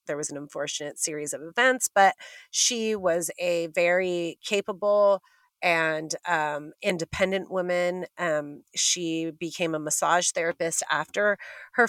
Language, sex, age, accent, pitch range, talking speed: English, female, 30-49, American, 170-240 Hz, 125 wpm